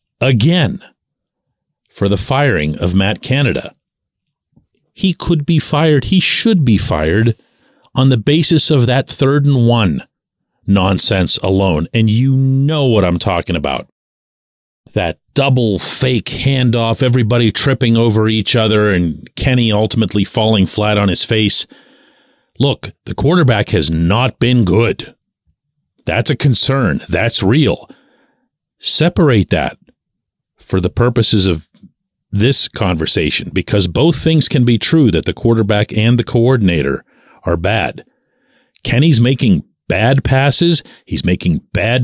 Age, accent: 40-59, American